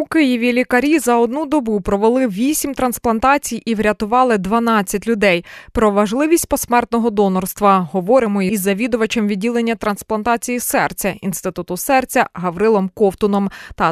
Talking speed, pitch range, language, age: 120 wpm, 190-230 Hz, Ukrainian, 20-39